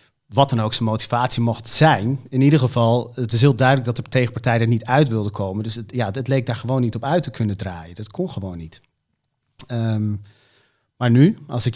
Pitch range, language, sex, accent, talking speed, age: 115-130 Hz, English, male, Dutch, 225 wpm, 40-59